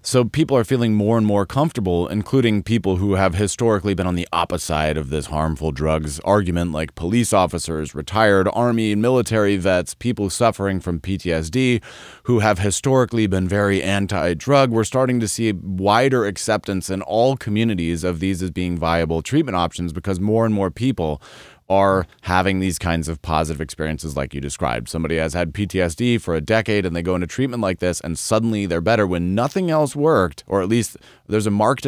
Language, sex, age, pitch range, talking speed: English, male, 30-49, 85-115 Hz, 190 wpm